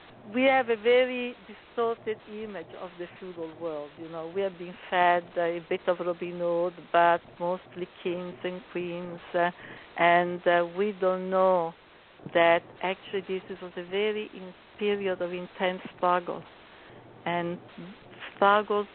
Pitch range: 175-205 Hz